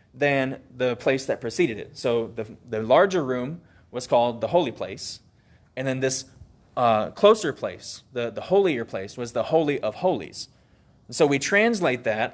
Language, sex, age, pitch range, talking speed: English, male, 20-39, 120-155 Hz, 170 wpm